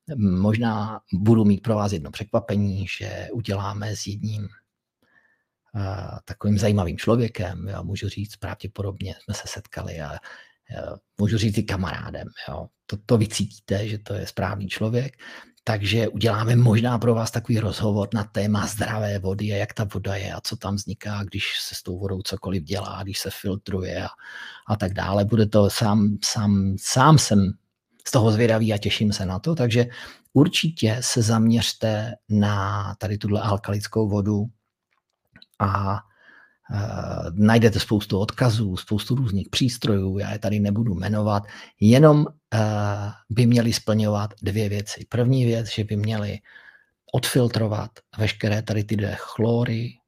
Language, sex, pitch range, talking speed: Czech, male, 100-115 Hz, 145 wpm